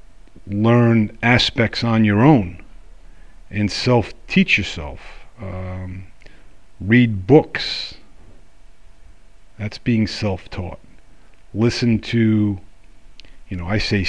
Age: 50-69